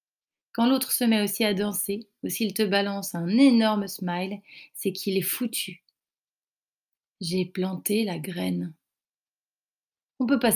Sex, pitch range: female, 180-220 Hz